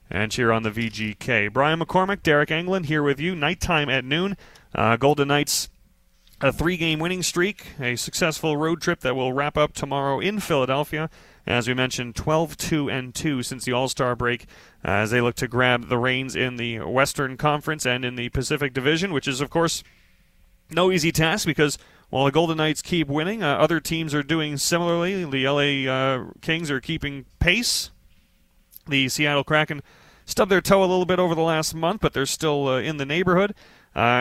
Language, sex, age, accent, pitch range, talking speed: English, male, 30-49, American, 130-160 Hz, 185 wpm